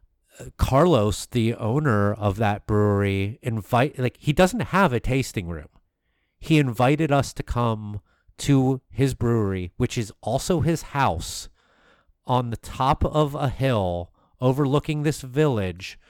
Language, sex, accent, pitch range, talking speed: English, male, American, 100-130 Hz, 135 wpm